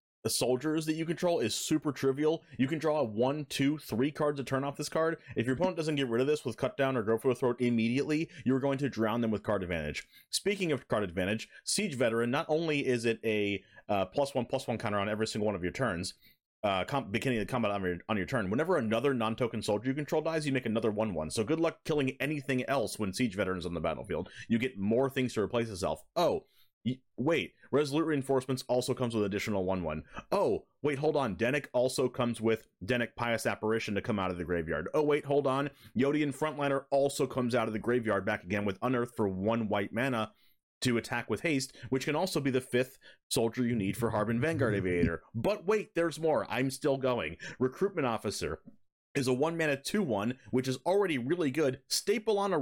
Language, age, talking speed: English, 30-49, 225 wpm